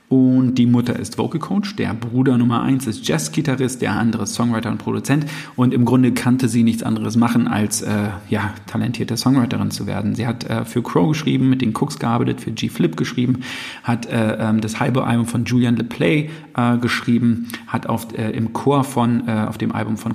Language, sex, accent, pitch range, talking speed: German, male, German, 115-130 Hz, 200 wpm